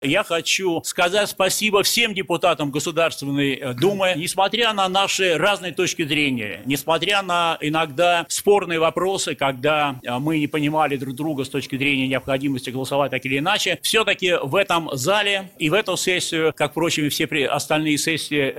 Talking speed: 150 wpm